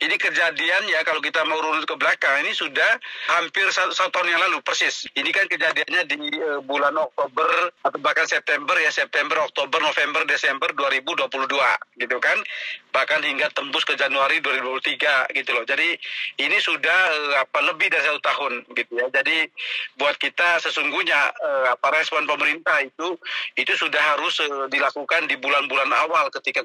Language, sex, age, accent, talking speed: Indonesian, male, 40-59, native, 165 wpm